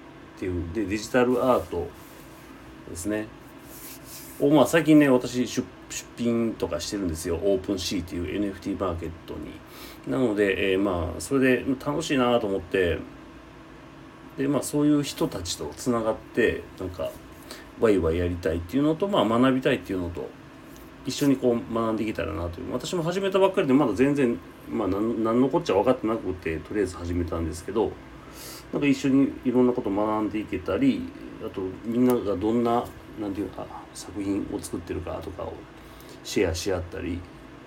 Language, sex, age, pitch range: Japanese, male, 40-59, 95-130 Hz